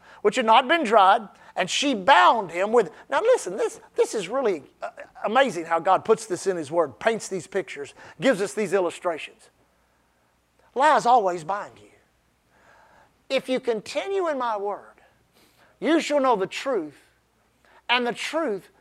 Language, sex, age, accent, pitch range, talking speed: English, male, 50-69, American, 225-335 Hz, 155 wpm